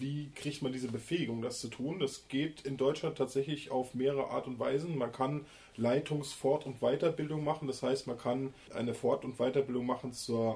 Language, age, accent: German, 20-39, German